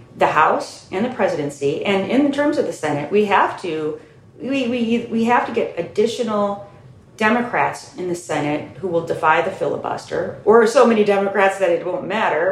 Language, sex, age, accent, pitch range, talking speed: English, female, 40-59, American, 150-225 Hz, 180 wpm